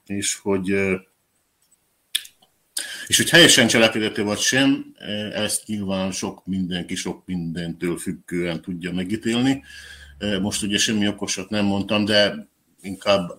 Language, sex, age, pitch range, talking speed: Hungarian, male, 50-69, 85-100 Hz, 110 wpm